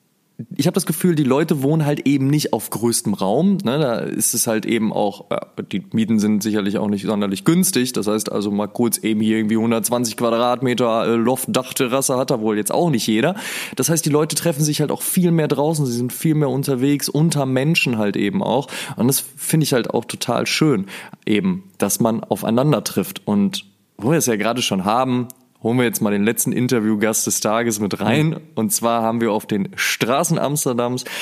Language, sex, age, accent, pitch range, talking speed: German, male, 20-39, German, 110-140 Hz, 210 wpm